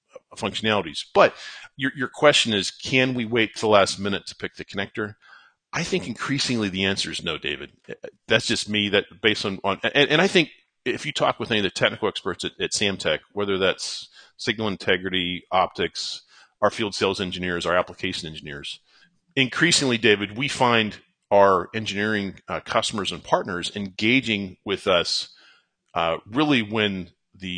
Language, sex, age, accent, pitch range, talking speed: English, male, 40-59, American, 95-120 Hz, 170 wpm